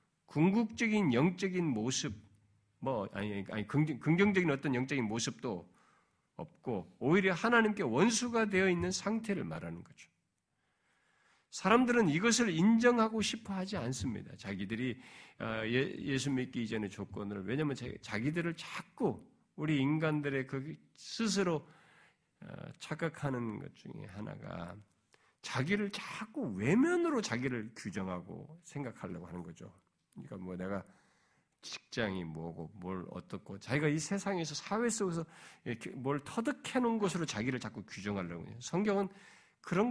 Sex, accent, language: male, native, Korean